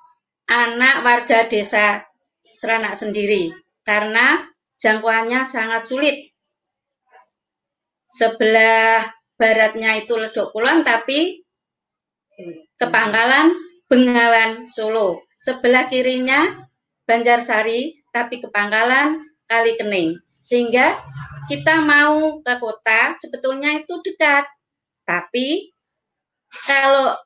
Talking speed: 75 wpm